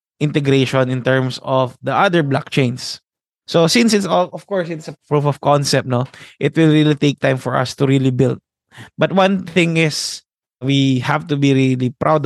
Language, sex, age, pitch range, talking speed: Filipino, male, 20-39, 130-150 Hz, 190 wpm